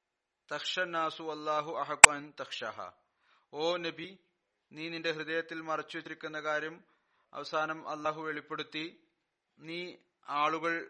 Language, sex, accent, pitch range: Malayalam, male, native, 150-165 Hz